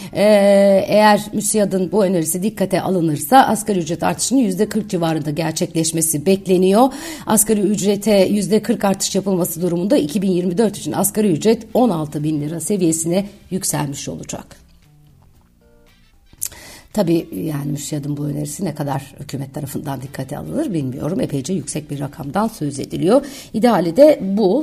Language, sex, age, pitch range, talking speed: Turkish, female, 60-79, 165-220 Hz, 125 wpm